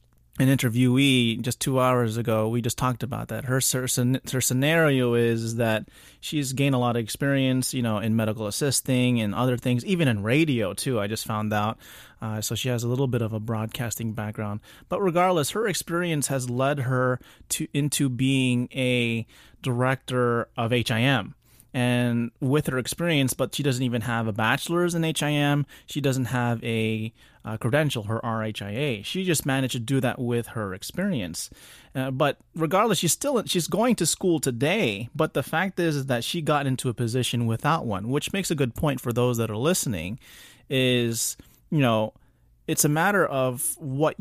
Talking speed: 185 wpm